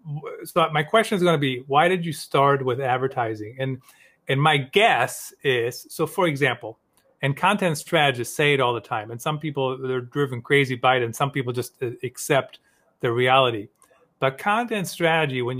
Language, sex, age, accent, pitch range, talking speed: English, male, 40-59, American, 125-160 Hz, 185 wpm